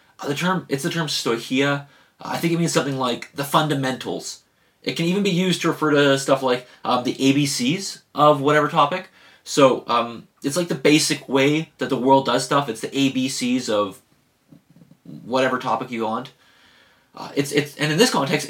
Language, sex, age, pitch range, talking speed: English, male, 30-49, 125-160 Hz, 185 wpm